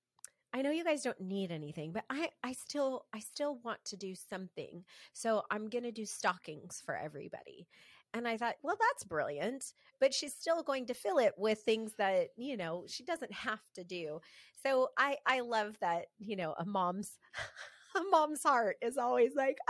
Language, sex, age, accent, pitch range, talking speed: English, female, 30-49, American, 185-255 Hz, 190 wpm